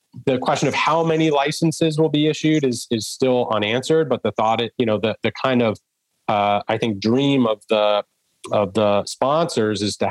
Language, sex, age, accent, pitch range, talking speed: English, male, 30-49, American, 110-130 Hz, 200 wpm